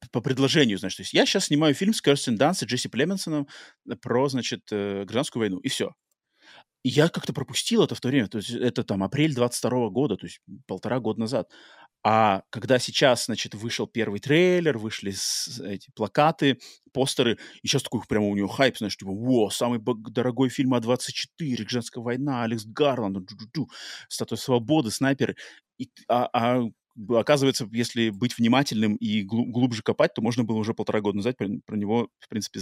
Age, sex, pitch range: 30-49, male, 110-140 Hz